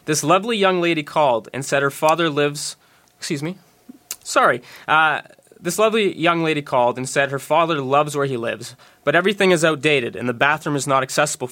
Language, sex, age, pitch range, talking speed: English, male, 20-39, 135-175 Hz, 195 wpm